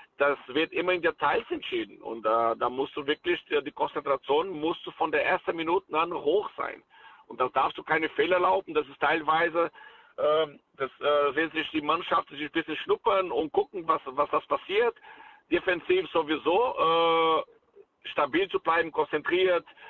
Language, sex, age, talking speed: German, male, 60-79, 170 wpm